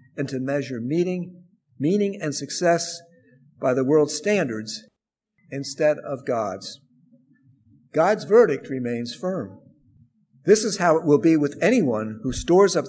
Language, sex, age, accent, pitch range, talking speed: English, male, 50-69, American, 125-160 Hz, 135 wpm